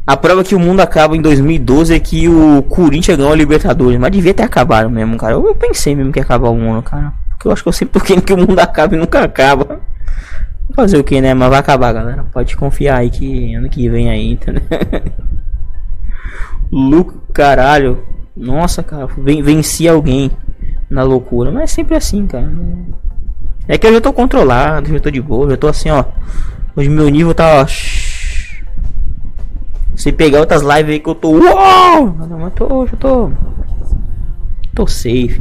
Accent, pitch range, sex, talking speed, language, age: Brazilian, 105-170 Hz, male, 180 wpm, Portuguese, 20-39